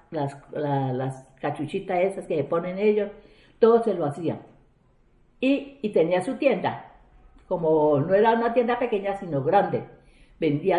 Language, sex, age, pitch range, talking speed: Spanish, female, 50-69, 140-185 Hz, 150 wpm